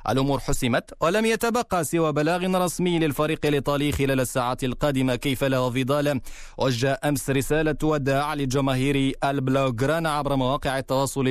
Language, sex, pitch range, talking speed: Arabic, male, 130-160 Hz, 125 wpm